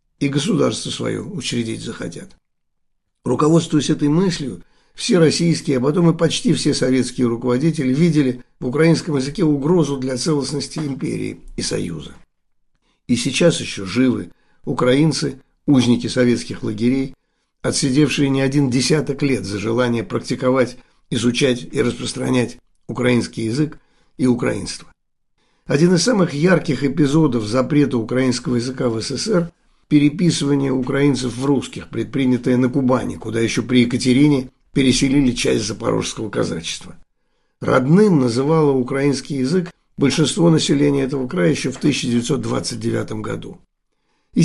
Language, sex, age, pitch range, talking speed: Russian, male, 60-79, 125-150 Hz, 120 wpm